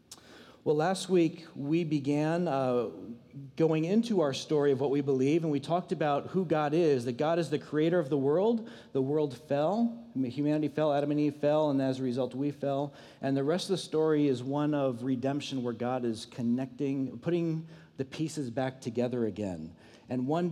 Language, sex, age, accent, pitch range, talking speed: English, male, 40-59, American, 125-155 Hz, 195 wpm